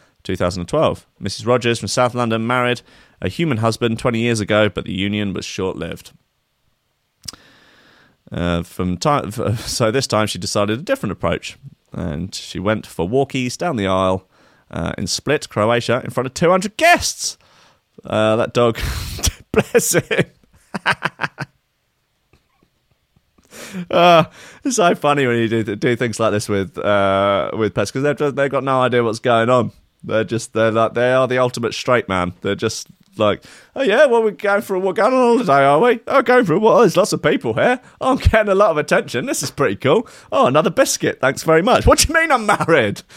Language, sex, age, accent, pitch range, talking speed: English, male, 30-49, British, 105-155 Hz, 185 wpm